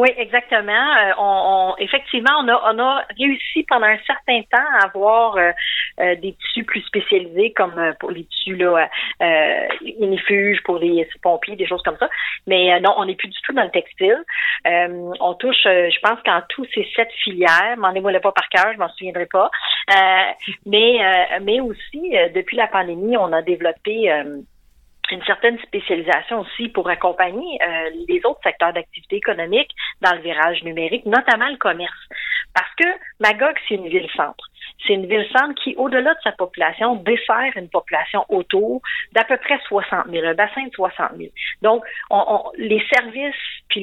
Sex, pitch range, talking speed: female, 185-245 Hz, 185 wpm